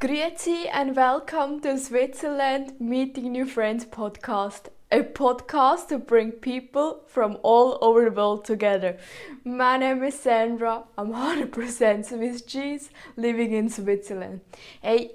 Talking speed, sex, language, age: 125 wpm, female, English, 20-39